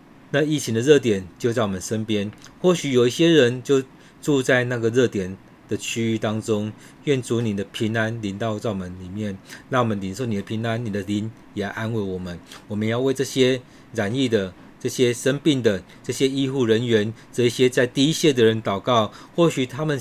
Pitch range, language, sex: 105-130 Hz, Chinese, male